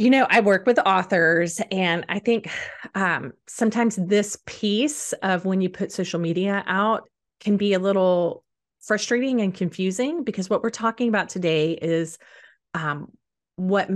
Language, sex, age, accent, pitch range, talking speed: English, female, 30-49, American, 170-225 Hz, 155 wpm